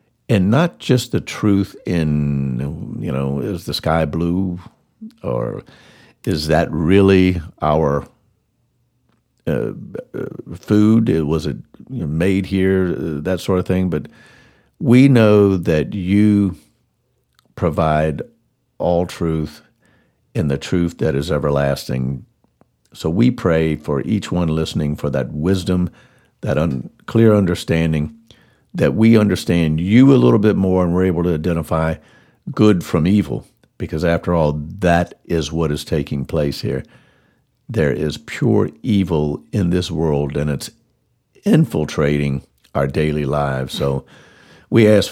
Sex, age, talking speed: male, 50-69, 130 wpm